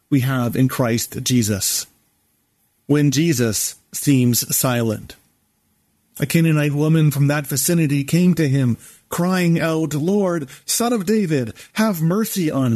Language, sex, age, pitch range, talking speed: English, male, 40-59, 125-160 Hz, 125 wpm